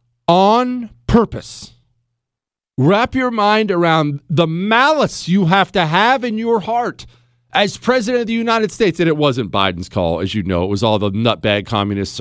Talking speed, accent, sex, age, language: 170 wpm, American, male, 40-59, English